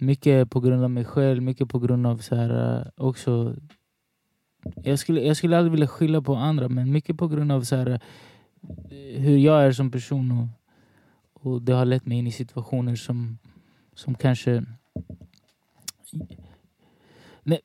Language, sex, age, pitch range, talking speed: Swedish, male, 20-39, 120-135 Hz, 160 wpm